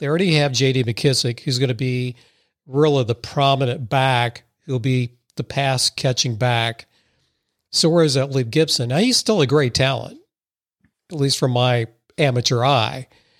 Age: 50-69